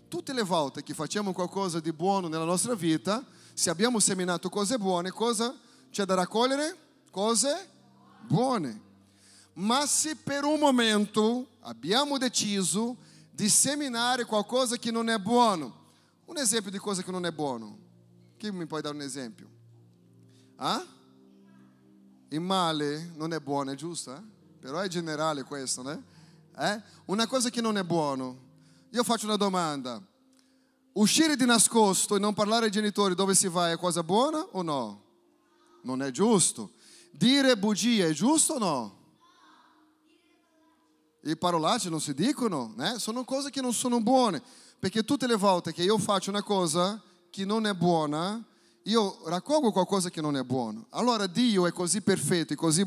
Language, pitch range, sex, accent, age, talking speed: Italian, 165-240 Hz, male, Brazilian, 30-49, 160 wpm